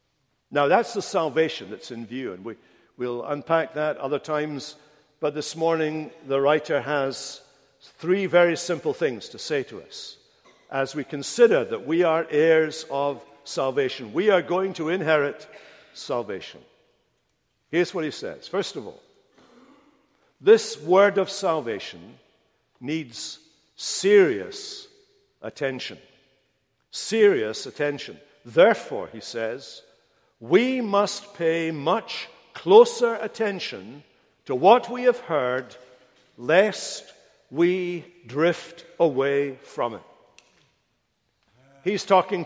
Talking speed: 115 wpm